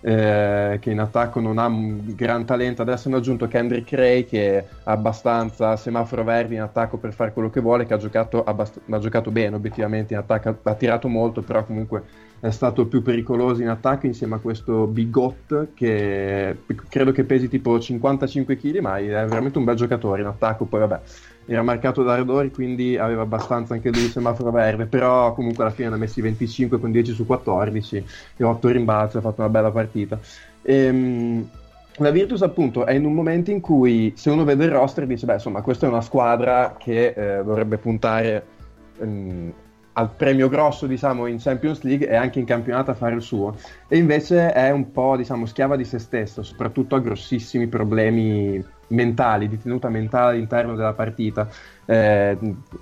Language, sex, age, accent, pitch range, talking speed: Italian, male, 20-39, native, 110-125 Hz, 185 wpm